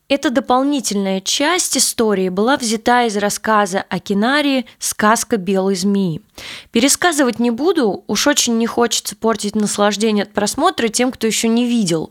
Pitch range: 200-250 Hz